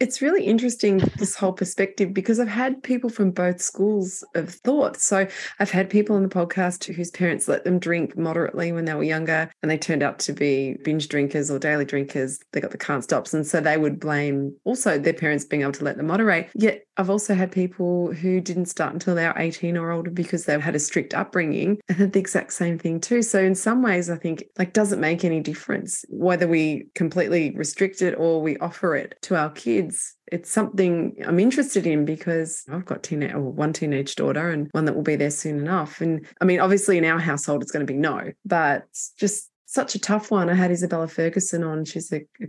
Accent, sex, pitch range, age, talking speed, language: Australian, female, 155-195 Hz, 20-39, 225 wpm, English